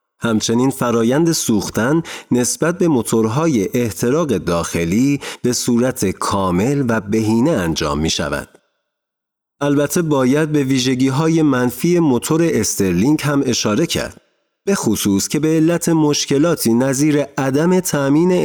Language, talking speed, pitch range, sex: Persian, 115 wpm, 115-160 Hz, male